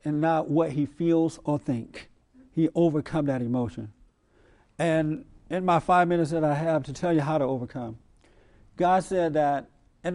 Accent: American